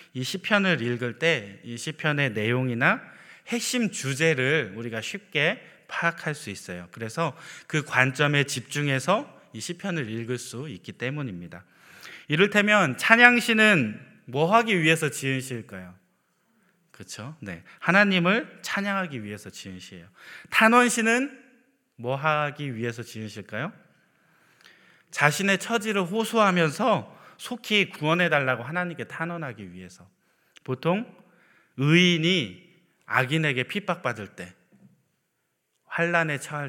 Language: Korean